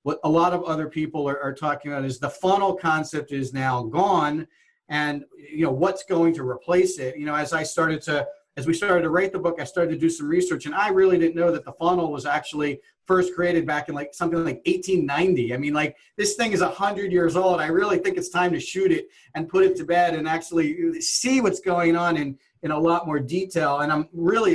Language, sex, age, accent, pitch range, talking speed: English, male, 40-59, American, 145-180 Hz, 240 wpm